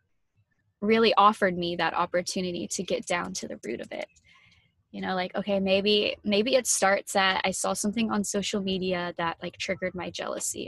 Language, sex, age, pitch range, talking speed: English, female, 20-39, 180-205 Hz, 185 wpm